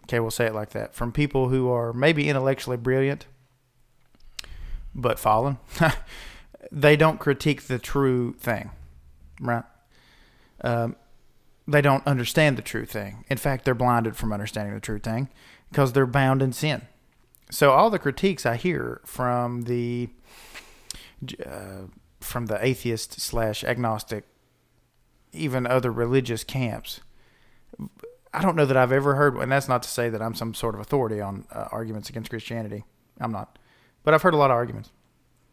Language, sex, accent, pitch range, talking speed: English, male, American, 115-135 Hz, 155 wpm